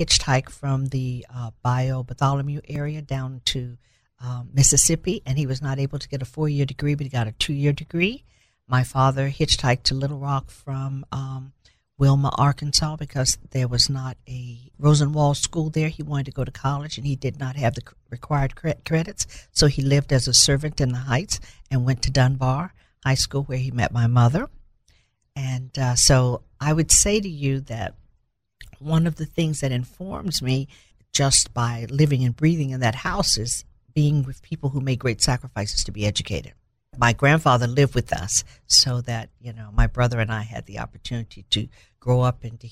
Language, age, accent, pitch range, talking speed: English, 50-69, American, 120-145 Hz, 190 wpm